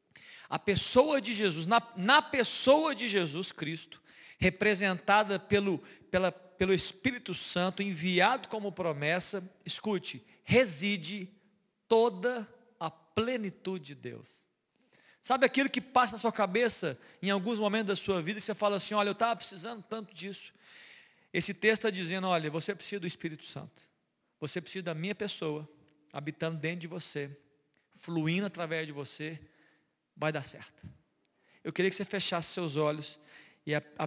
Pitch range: 155-200 Hz